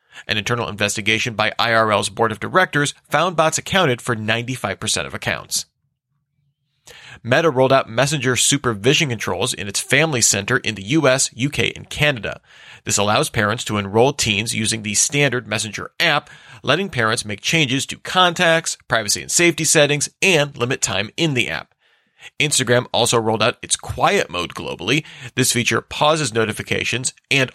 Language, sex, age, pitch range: English, male, 30-49, 110-145 Hz